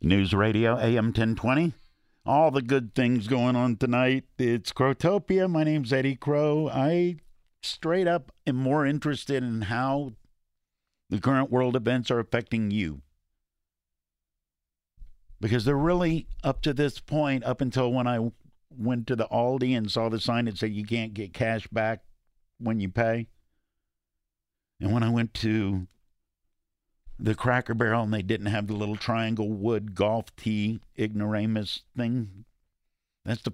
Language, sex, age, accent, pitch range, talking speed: English, male, 50-69, American, 105-130 Hz, 150 wpm